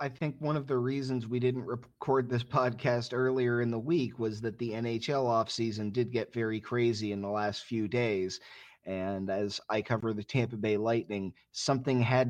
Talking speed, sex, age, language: 190 wpm, male, 30-49, English